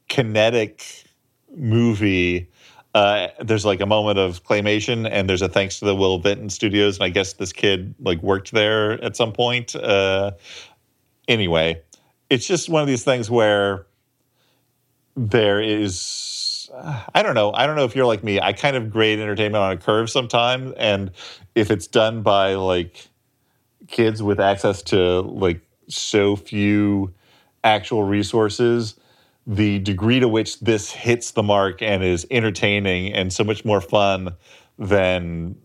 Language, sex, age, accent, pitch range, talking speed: English, male, 40-59, American, 90-110 Hz, 155 wpm